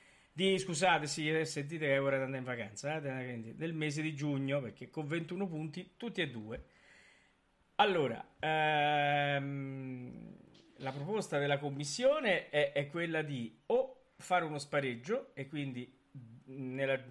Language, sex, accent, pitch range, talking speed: Italian, male, native, 125-155 Hz, 135 wpm